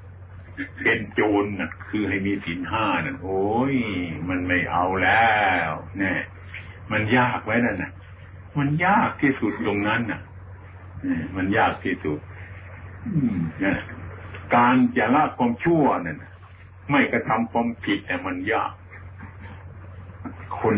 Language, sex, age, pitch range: Thai, male, 60-79, 95-110 Hz